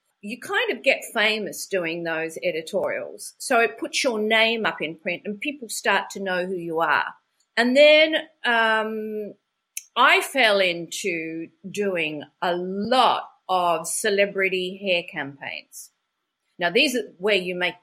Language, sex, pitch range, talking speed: English, female, 180-245 Hz, 145 wpm